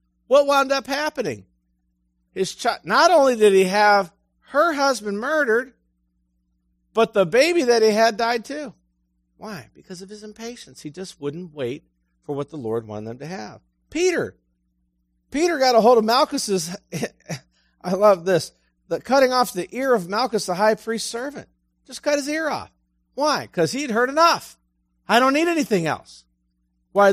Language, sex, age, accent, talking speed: English, male, 50-69, American, 165 wpm